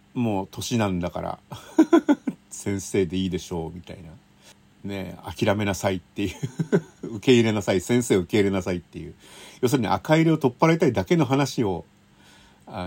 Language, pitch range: Japanese, 90-115 Hz